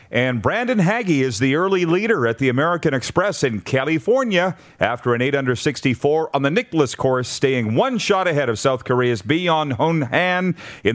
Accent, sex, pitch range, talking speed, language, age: American, male, 120-150 Hz, 180 wpm, English, 40-59